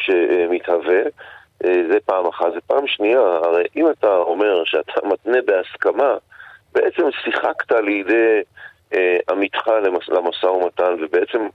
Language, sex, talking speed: Hebrew, male, 115 wpm